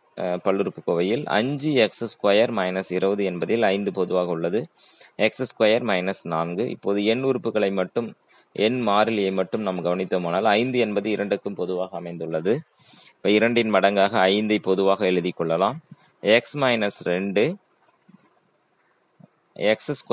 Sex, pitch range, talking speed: male, 90-115 Hz, 120 wpm